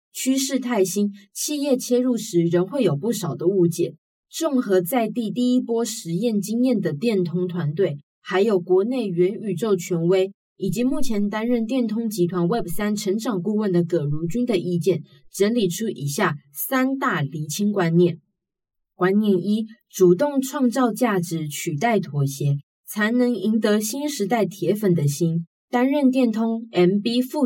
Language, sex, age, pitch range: Chinese, female, 20-39, 175-230 Hz